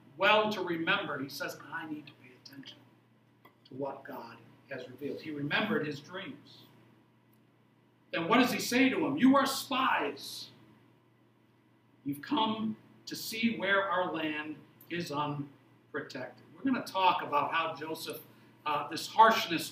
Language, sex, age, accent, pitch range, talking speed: English, male, 60-79, American, 150-220 Hz, 145 wpm